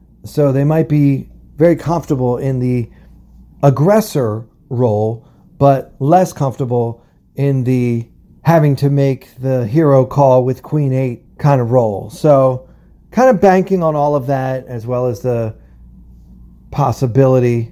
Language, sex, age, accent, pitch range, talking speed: English, male, 40-59, American, 120-145 Hz, 135 wpm